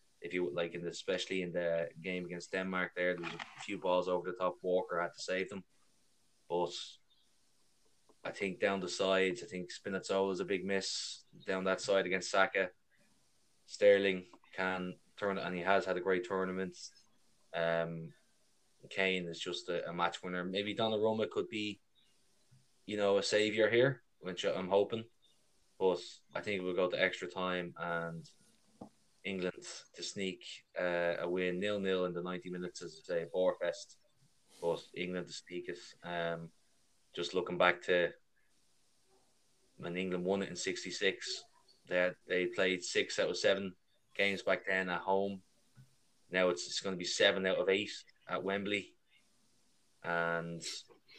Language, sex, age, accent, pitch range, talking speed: English, male, 20-39, Irish, 90-100 Hz, 160 wpm